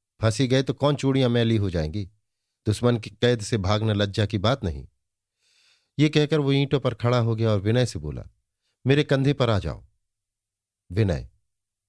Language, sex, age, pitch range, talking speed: Hindi, male, 50-69, 100-125 Hz, 175 wpm